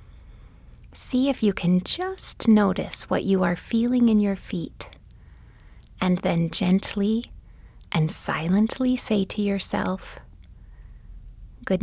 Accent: American